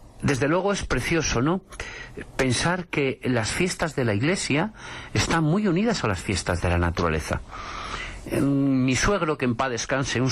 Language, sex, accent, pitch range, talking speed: Spanish, male, Spanish, 100-150 Hz, 170 wpm